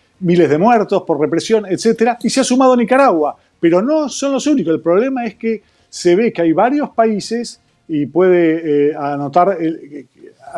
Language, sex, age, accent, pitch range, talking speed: Spanish, male, 40-59, Argentinian, 155-225 Hz, 180 wpm